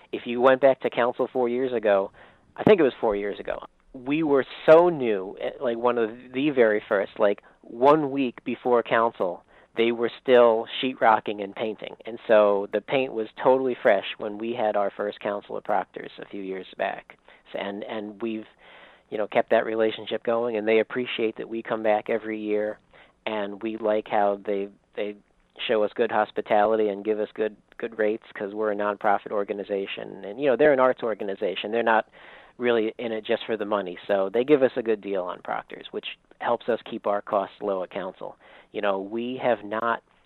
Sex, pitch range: male, 105-120 Hz